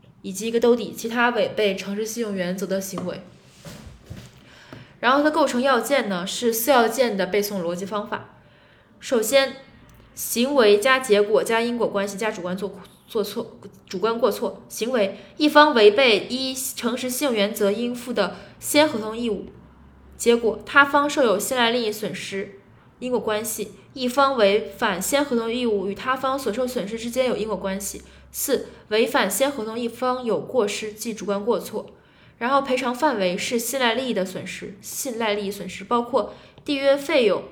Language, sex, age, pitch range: Chinese, female, 20-39, 200-255 Hz